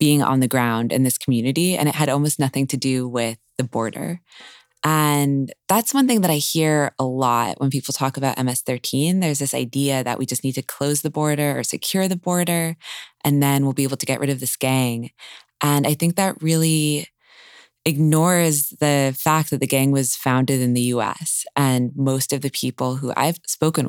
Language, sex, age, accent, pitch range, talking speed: English, female, 20-39, American, 130-155 Hz, 205 wpm